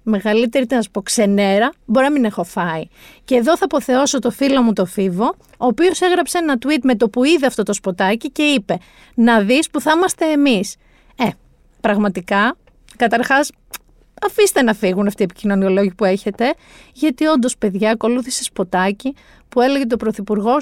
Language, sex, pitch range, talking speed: Greek, female, 210-300 Hz, 175 wpm